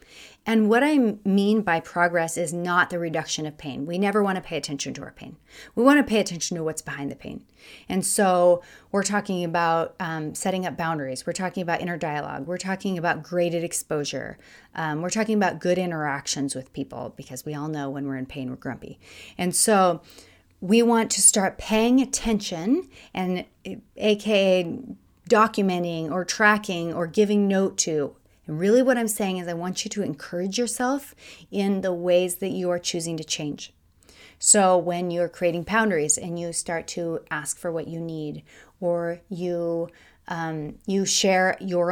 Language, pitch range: English, 165-200 Hz